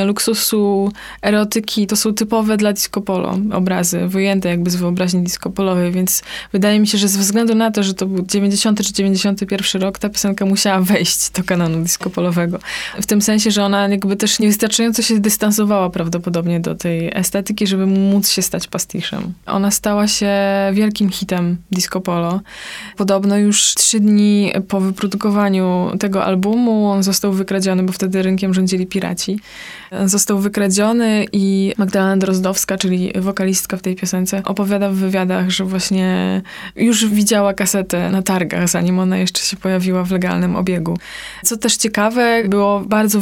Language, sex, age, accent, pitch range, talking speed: Polish, female, 20-39, native, 185-210 Hz, 160 wpm